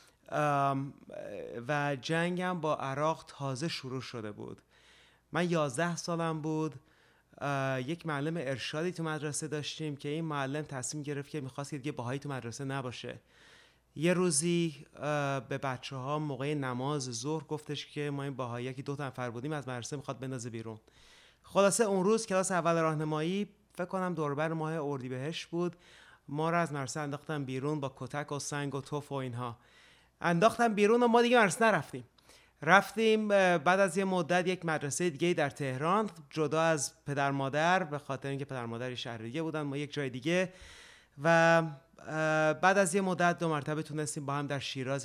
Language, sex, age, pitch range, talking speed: Persian, male, 30-49, 135-165 Hz, 165 wpm